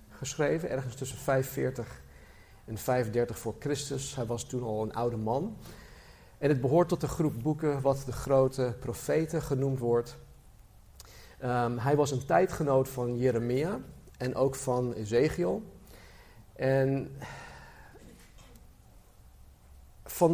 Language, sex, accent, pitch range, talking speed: Dutch, male, Dutch, 115-145 Hz, 120 wpm